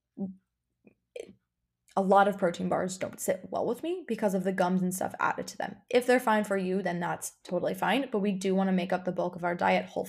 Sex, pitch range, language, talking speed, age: female, 185-225 Hz, English, 245 wpm, 20-39